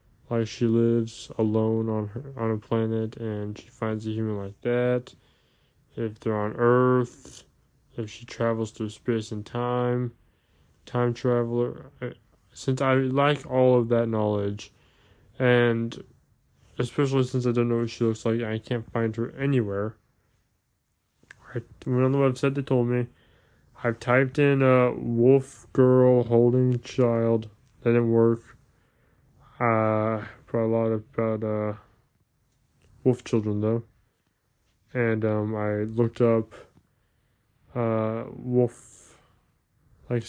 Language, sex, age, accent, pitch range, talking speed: English, male, 20-39, American, 110-120 Hz, 135 wpm